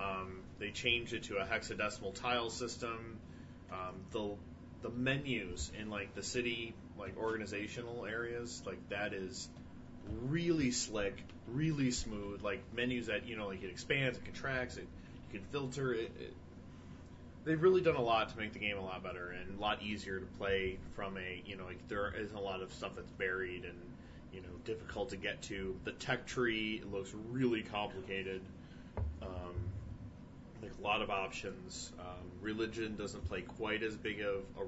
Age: 30-49